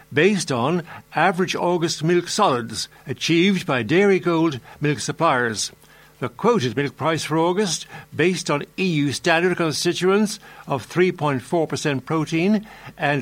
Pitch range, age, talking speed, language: 150-190 Hz, 60-79, 125 wpm, English